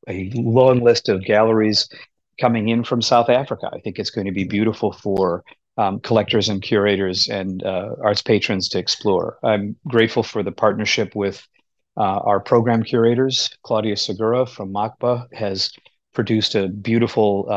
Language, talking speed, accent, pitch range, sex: English, 155 wpm, American, 100-120 Hz, male